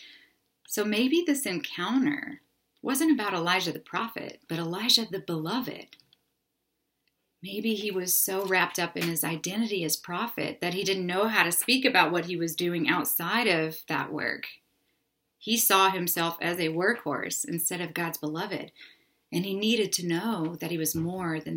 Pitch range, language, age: 160-195 Hz, English, 30-49